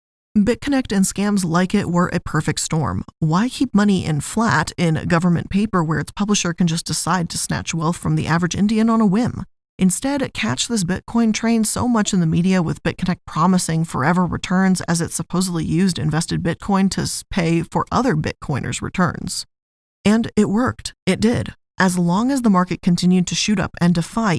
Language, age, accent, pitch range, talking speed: English, 20-39, American, 165-205 Hz, 190 wpm